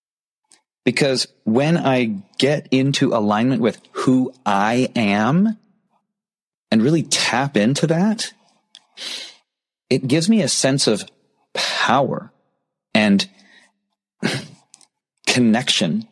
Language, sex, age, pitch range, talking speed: English, male, 30-49, 110-180 Hz, 90 wpm